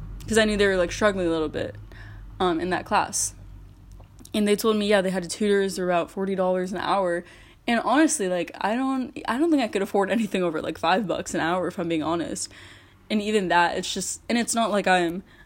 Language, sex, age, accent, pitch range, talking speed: English, female, 10-29, American, 175-205 Hz, 235 wpm